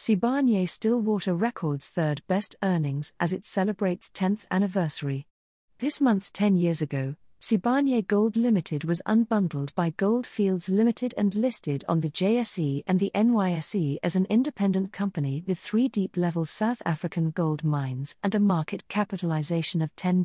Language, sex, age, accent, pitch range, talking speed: English, female, 40-59, British, 160-215 Hz, 150 wpm